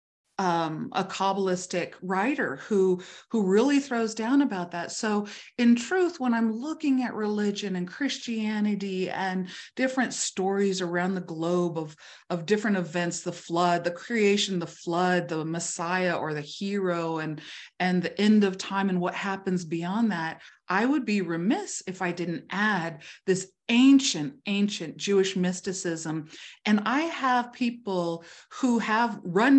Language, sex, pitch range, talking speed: English, female, 180-225 Hz, 150 wpm